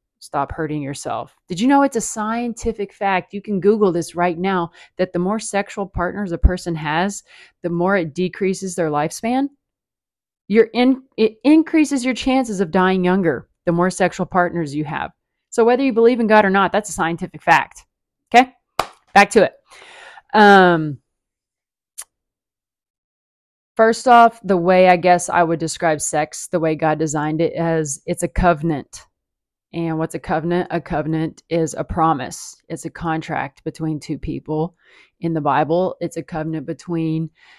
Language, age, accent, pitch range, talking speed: English, 30-49, American, 160-200 Hz, 165 wpm